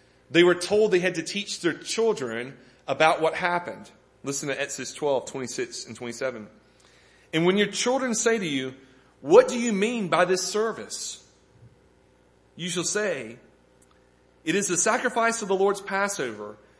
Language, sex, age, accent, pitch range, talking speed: English, male, 30-49, American, 130-195 Hz, 155 wpm